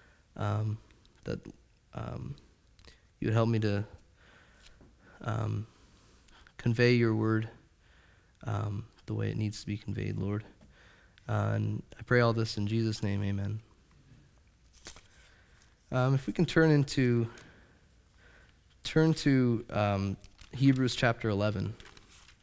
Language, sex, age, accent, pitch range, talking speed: English, male, 20-39, American, 100-115 Hz, 115 wpm